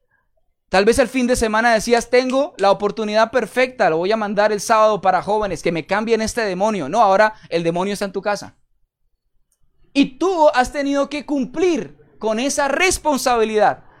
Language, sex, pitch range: Spanish, male, 220-280 Hz